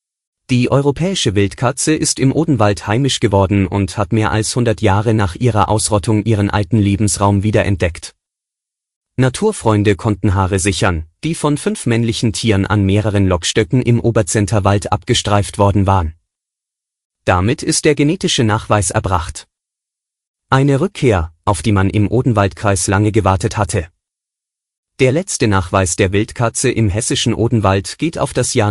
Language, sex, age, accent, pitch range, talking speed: German, male, 30-49, German, 100-125 Hz, 140 wpm